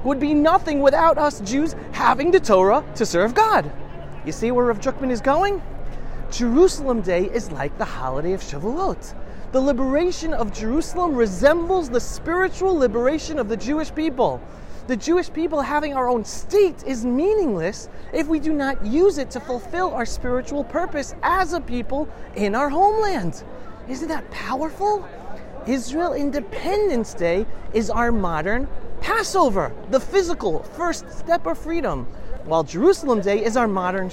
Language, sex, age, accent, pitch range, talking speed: English, male, 30-49, American, 215-315 Hz, 155 wpm